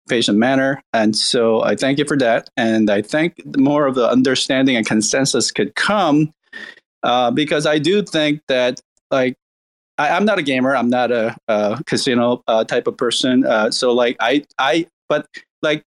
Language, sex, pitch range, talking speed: English, male, 120-160 Hz, 175 wpm